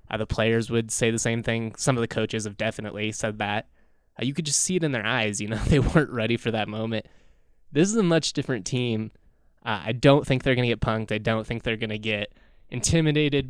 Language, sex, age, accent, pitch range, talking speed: English, male, 20-39, American, 110-130 Hz, 250 wpm